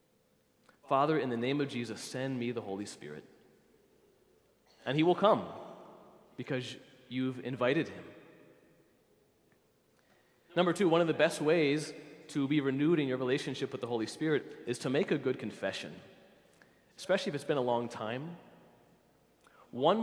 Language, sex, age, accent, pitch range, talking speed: English, male, 30-49, American, 120-150 Hz, 150 wpm